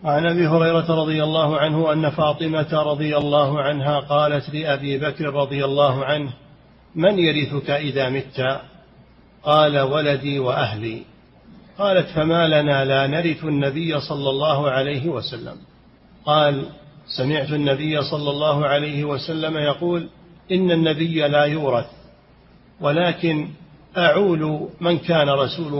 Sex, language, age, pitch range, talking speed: male, Arabic, 40-59, 135-155 Hz, 120 wpm